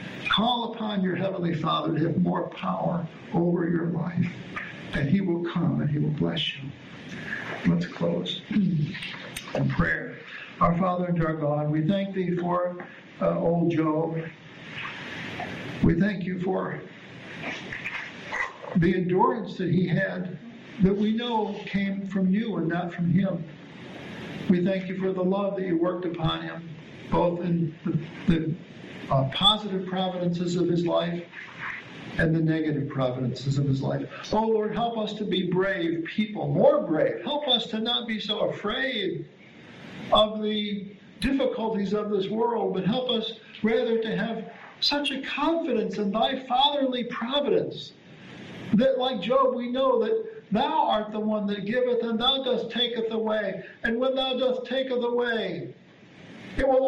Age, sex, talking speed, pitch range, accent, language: 60-79, male, 155 wpm, 170-230 Hz, American, English